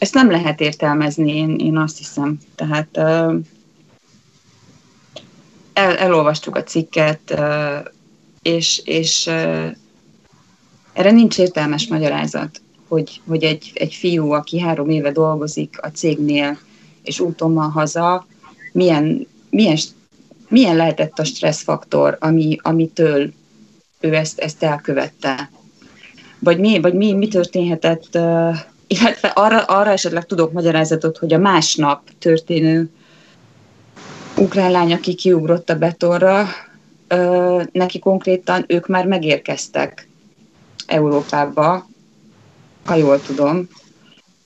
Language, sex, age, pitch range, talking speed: Hungarian, female, 30-49, 150-180 Hz, 100 wpm